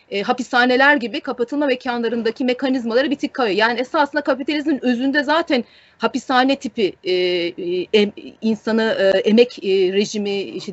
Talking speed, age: 135 wpm, 30-49